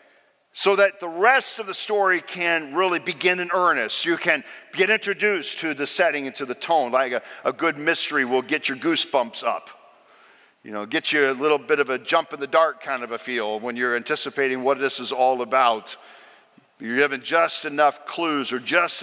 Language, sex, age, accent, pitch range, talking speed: English, male, 50-69, American, 130-170 Hz, 205 wpm